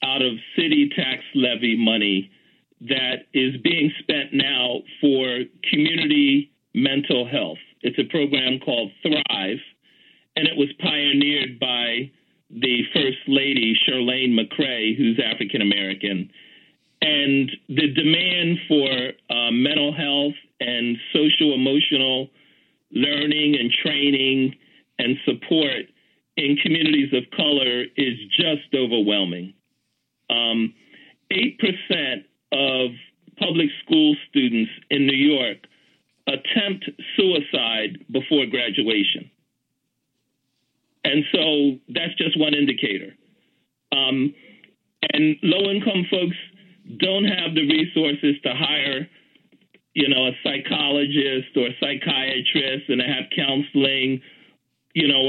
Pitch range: 130-160 Hz